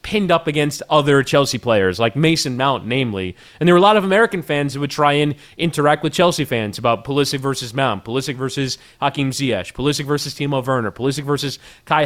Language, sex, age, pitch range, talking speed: English, male, 30-49, 135-165 Hz, 205 wpm